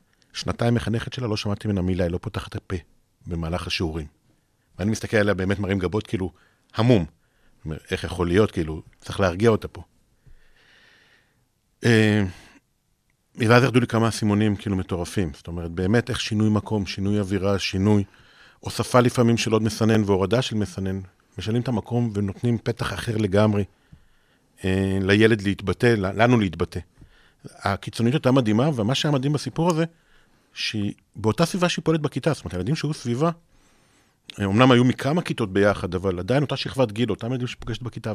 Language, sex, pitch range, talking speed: Hebrew, male, 95-120 Hz, 155 wpm